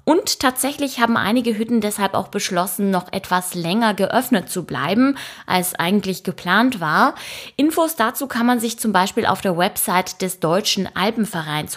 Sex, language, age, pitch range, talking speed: female, German, 20-39, 180-235 Hz, 160 wpm